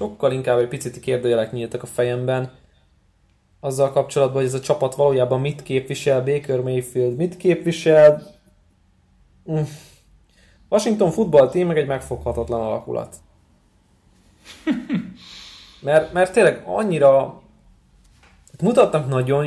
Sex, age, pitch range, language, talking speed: male, 20-39, 120-160 Hz, Hungarian, 105 wpm